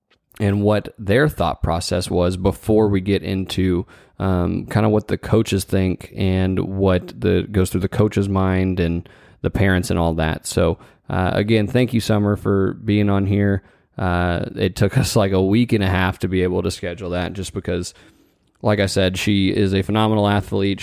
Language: English